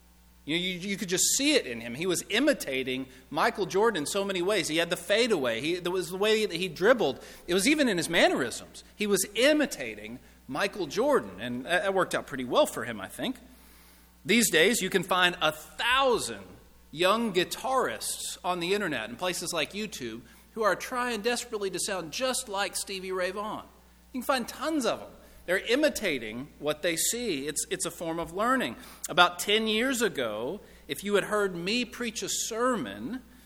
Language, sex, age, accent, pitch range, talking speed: English, male, 40-59, American, 140-205 Hz, 185 wpm